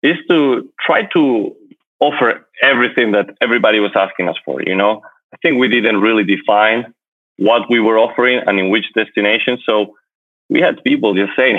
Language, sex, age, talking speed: English, male, 30-49, 175 wpm